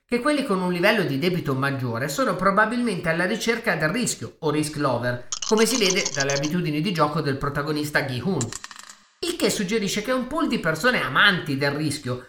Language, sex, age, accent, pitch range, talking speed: Italian, male, 30-49, native, 150-225 Hz, 185 wpm